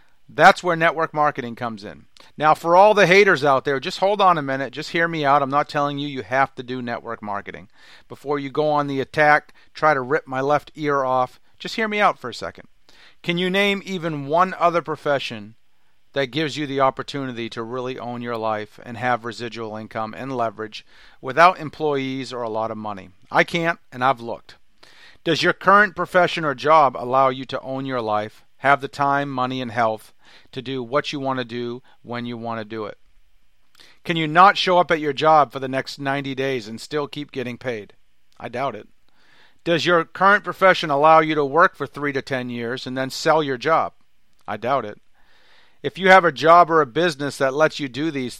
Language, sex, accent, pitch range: English, male, American, 120-160 Hz